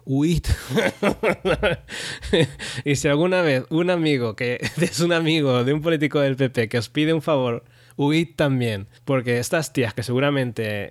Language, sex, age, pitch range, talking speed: English, male, 20-39, 120-155 Hz, 160 wpm